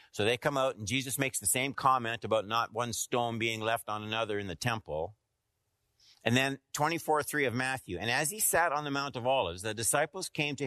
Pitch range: 110-150 Hz